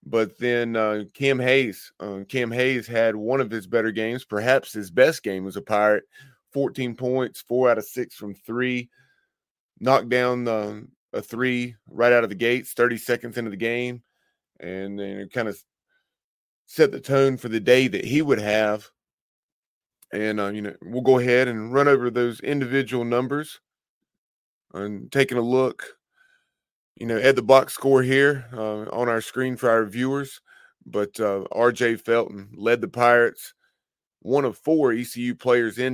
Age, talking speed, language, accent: 30-49, 170 wpm, English, American